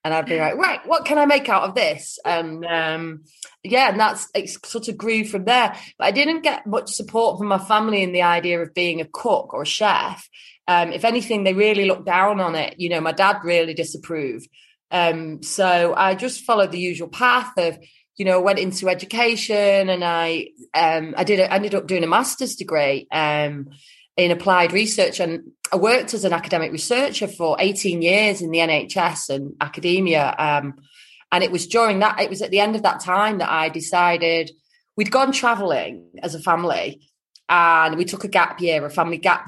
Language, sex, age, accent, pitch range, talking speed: English, female, 30-49, British, 165-215 Hz, 200 wpm